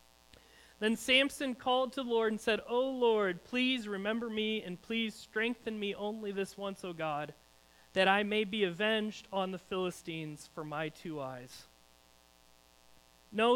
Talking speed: 155 wpm